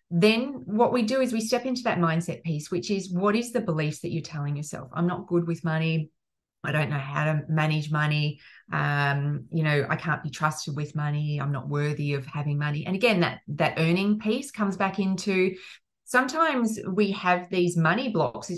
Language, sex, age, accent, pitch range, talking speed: English, female, 30-49, Australian, 150-190 Hz, 205 wpm